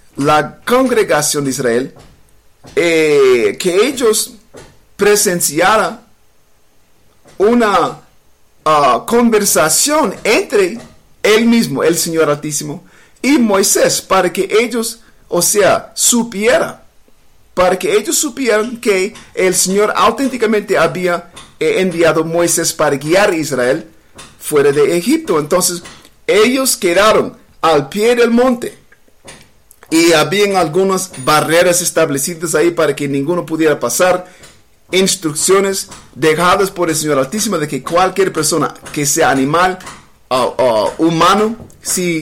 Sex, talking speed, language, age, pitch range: male, 110 wpm, English, 50-69, 165-230 Hz